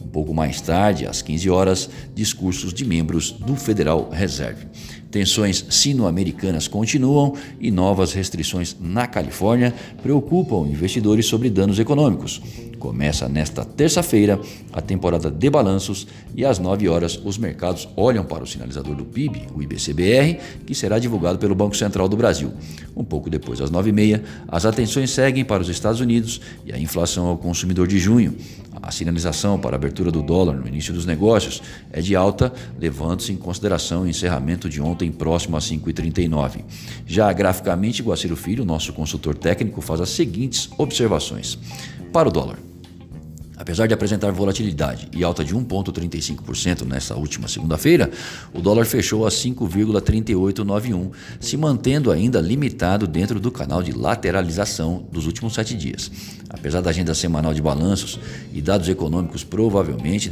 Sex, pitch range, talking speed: male, 85-110 Hz, 150 wpm